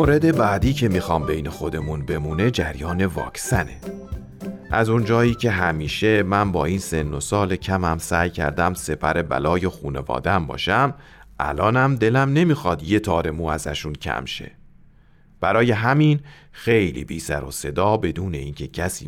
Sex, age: male, 40-59